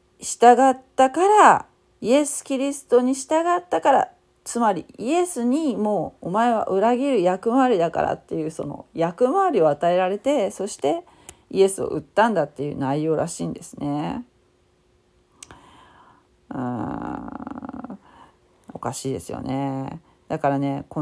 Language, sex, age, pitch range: Japanese, female, 40-59, 150-215 Hz